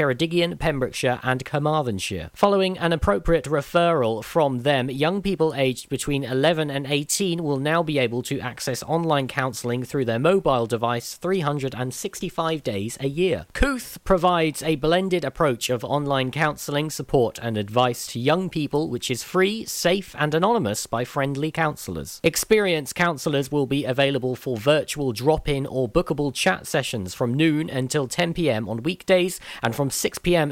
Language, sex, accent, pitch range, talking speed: English, male, British, 130-165 Hz, 150 wpm